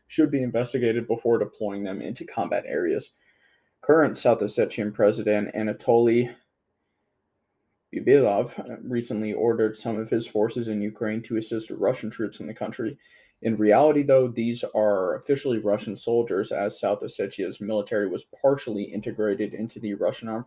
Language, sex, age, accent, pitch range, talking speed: English, male, 20-39, American, 105-120 Hz, 145 wpm